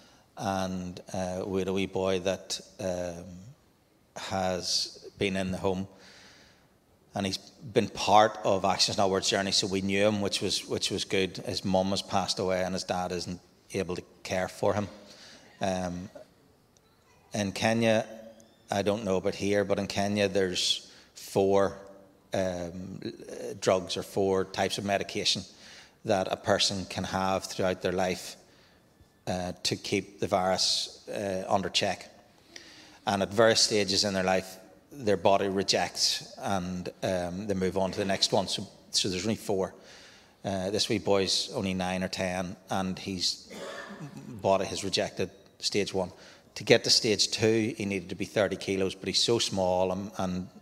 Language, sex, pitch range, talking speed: English, male, 95-100 Hz, 160 wpm